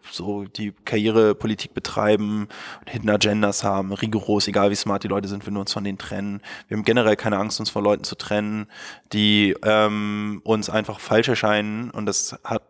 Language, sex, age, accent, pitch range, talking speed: German, male, 20-39, German, 105-115 Hz, 185 wpm